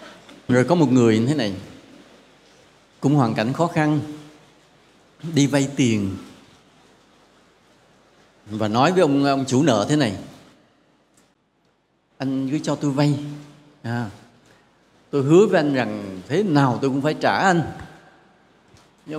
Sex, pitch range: male, 130-200 Hz